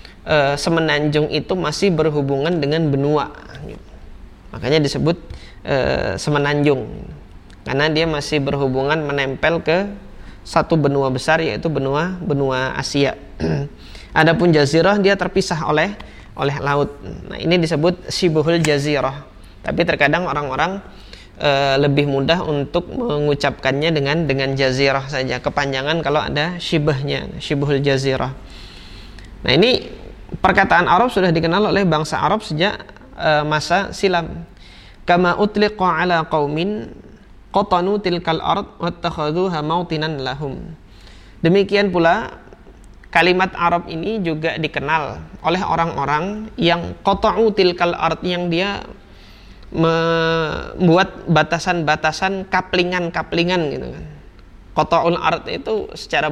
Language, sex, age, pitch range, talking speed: Indonesian, male, 20-39, 140-175 Hz, 110 wpm